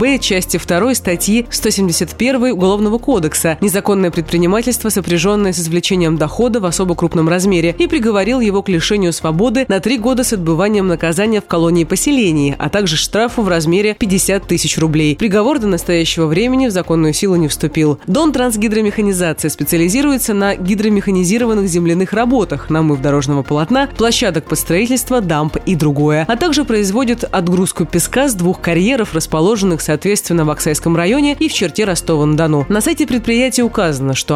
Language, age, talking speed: Russian, 30-49, 155 wpm